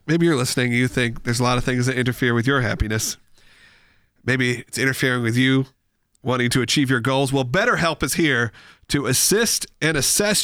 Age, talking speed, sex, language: 40-59, 195 wpm, male, English